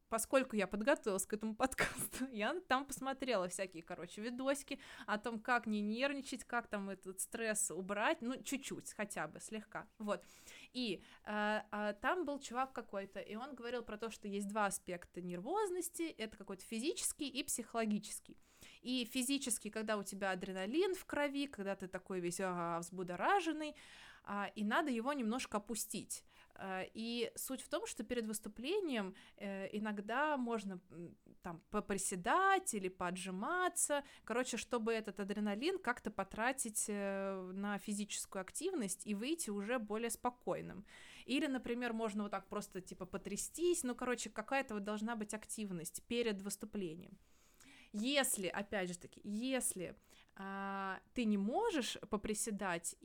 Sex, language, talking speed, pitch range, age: female, Russian, 135 wpm, 195-255 Hz, 20-39